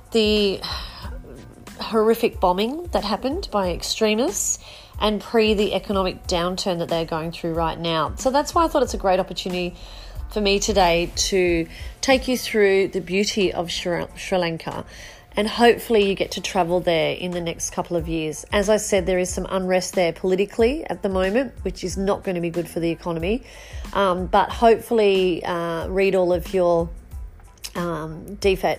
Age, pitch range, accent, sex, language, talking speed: 30-49, 170-205 Hz, Australian, female, English, 175 wpm